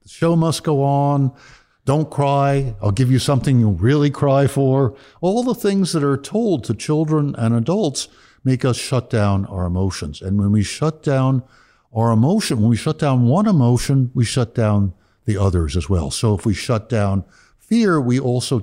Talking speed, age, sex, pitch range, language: 190 wpm, 60-79, male, 105-145 Hz, English